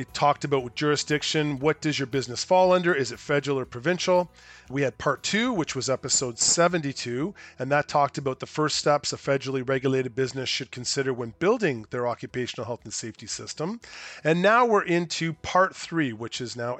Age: 40-59